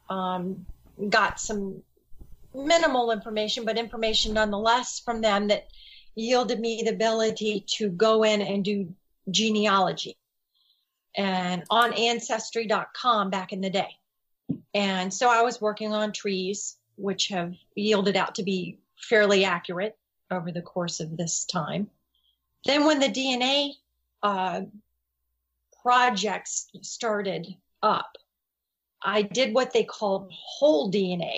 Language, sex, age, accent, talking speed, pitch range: English, female, 40-59, American, 120 wpm, 190-235 Hz